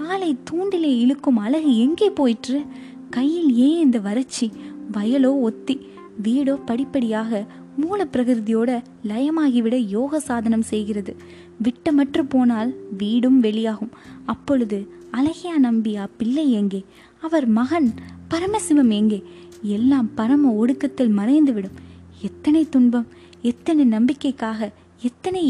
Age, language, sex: 20-39, Tamil, female